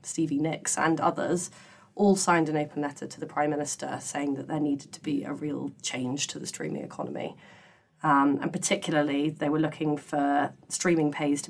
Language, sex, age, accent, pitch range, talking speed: English, female, 20-39, British, 145-165 Hz, 190 wpm